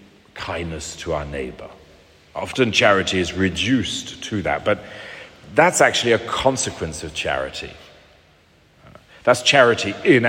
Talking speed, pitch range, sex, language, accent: 115 wpm, 90-130 Hz, male, English, British